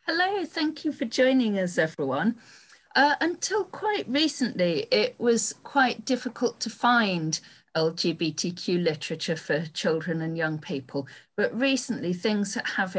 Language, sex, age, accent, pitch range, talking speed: English, female, 40-59, British, 160-220 Hz, 130 wpm